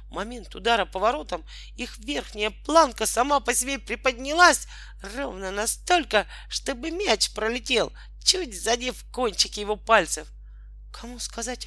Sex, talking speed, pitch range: male, 120 wpm, 180-240 Hz